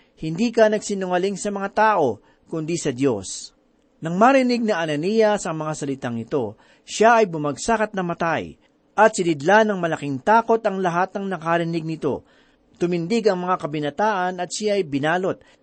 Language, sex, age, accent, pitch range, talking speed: Filipino, male, 40-59, native, 155-215 Hz, 155 wpm